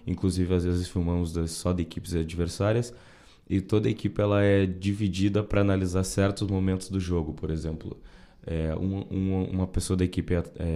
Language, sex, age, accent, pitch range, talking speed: Portuguese, male, 20-39, Brazilian, 90-105 Hz, 180 wpm